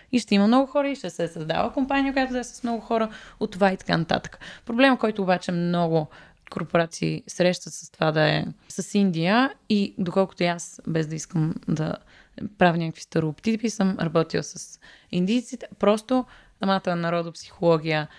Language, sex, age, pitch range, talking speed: Bulgarian, female, 20-39, 170-210 Hz, 170 wpm